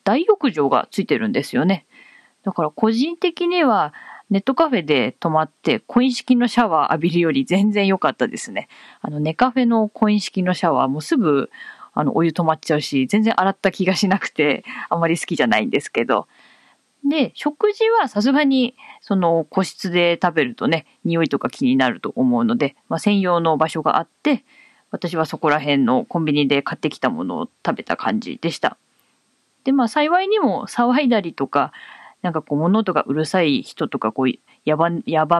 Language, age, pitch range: Japanese, 20-39, 155-250 Hz